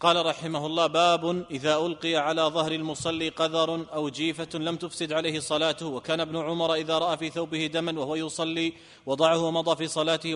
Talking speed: 175 wpm